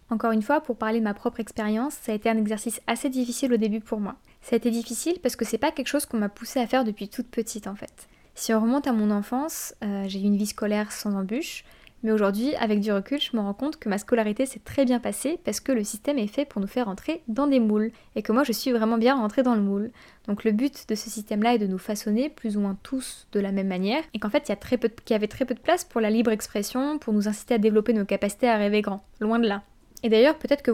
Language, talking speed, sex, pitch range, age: French, 280 wpm, female, 215-260 Hz, 10-29